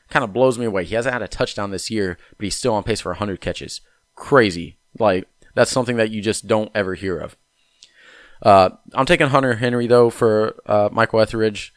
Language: English